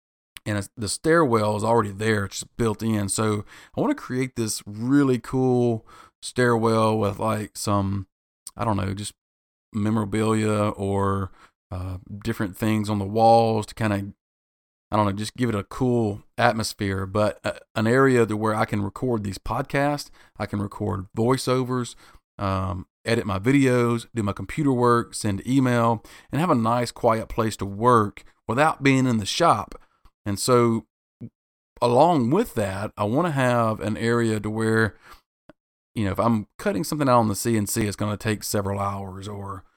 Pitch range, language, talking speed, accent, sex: 100-115 Hz, English, 170 wpm, American, male